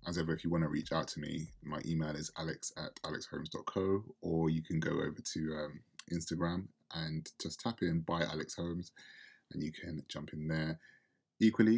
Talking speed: 195 wpm